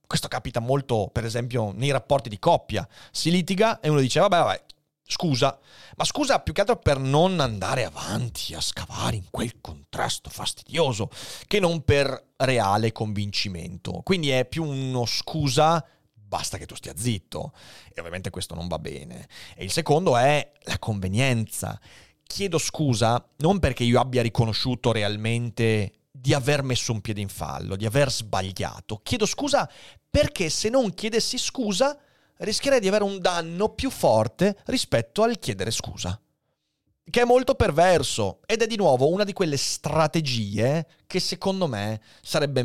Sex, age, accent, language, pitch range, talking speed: male, 30-49, native, Italian, 110-160 Hz, 155 wpm